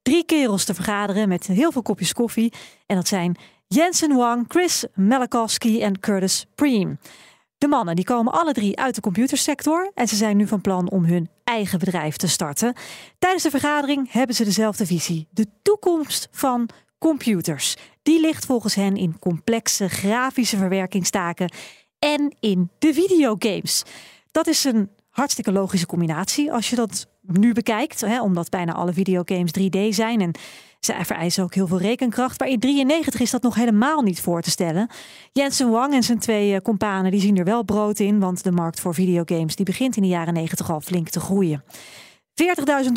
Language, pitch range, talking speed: Dutch, 185-255 Hz, 175 wpm